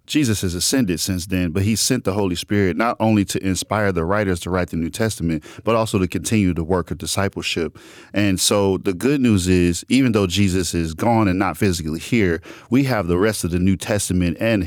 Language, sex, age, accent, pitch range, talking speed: English, male, 40-59, American, 85-110 Hz, 220 wpm